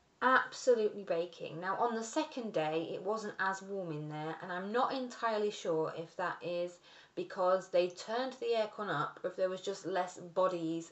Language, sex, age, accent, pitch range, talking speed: English, female, 20-39, British, 160-195 Hz, 185 wpm